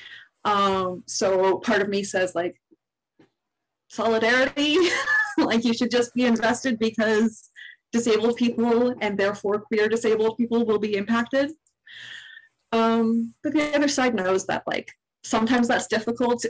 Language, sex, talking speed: English, female, 130 wpm